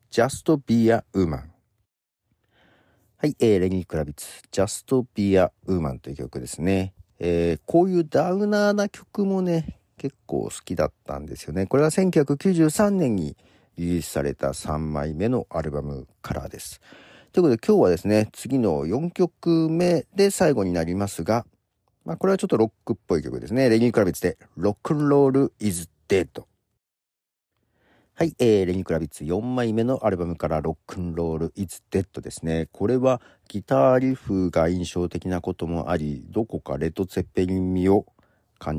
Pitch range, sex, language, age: 85-140 Hz, male, Japanese, 50-69